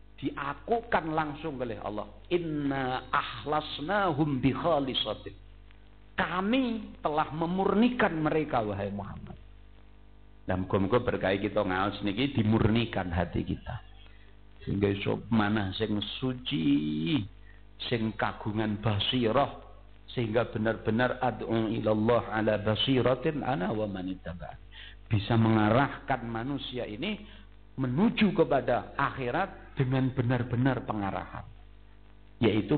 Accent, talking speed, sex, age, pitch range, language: native, 95 wpm, male, 50-69, 100-130 Hz, Indonesian